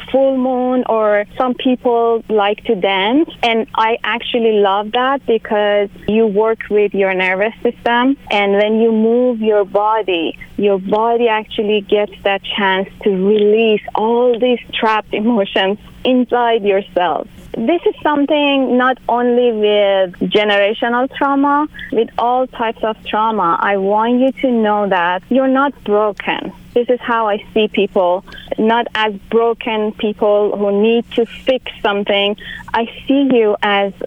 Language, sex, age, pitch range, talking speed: English, female, 30-49, 205-240 Hz, 145 wpm